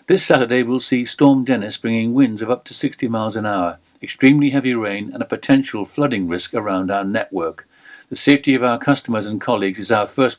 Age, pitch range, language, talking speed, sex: 60-79, 105-135 Hz, English, 210 wpm, male